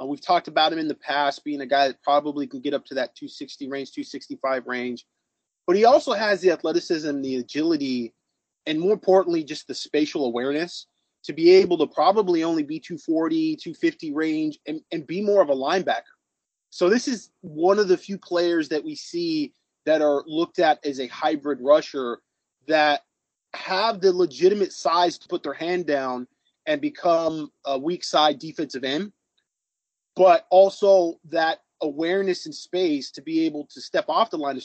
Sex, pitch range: male, 150-205 Hz